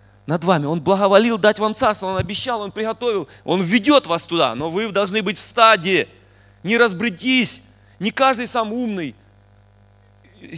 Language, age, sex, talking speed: Russian, 30-49, male, 155 wpm